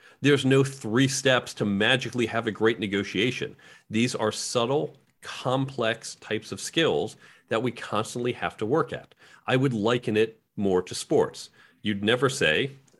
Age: 40-59